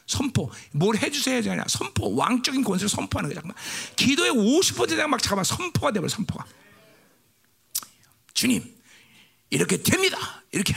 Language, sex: Korean, male